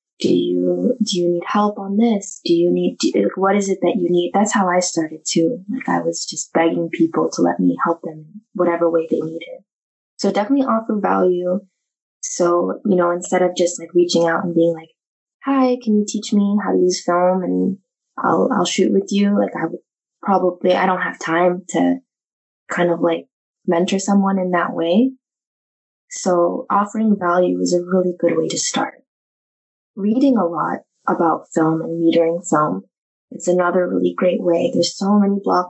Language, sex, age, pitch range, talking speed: English, female, 20-39, 170-210 Hz, 190 wpm